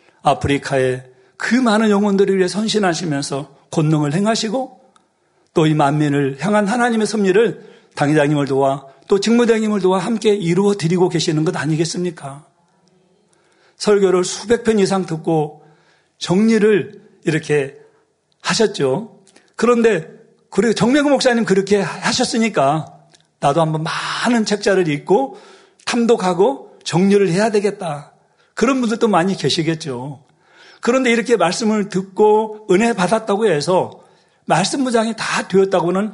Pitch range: 165-220 Hz